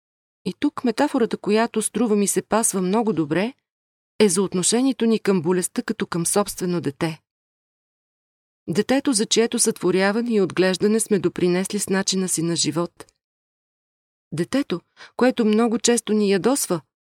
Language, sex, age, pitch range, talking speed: Bulgarian, female, 30-49, 170-210 Hz, 135 wpm